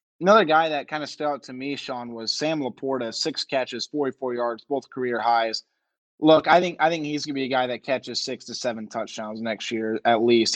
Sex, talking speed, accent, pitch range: male, 235 wpm, American, 120-140 Hz